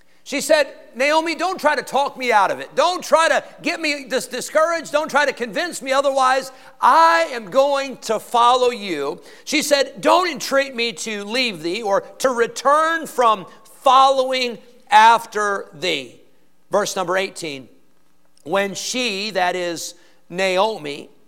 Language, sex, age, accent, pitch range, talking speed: English, male, 50-69, American, 185-270 Hz, 145 wpm